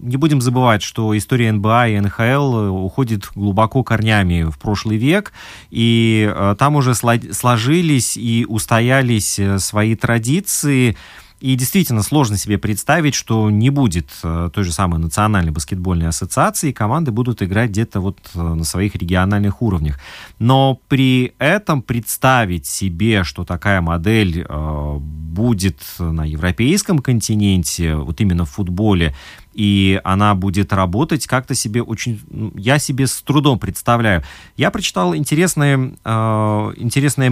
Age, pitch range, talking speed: 30-49, 95-125 Hz, 130 wpm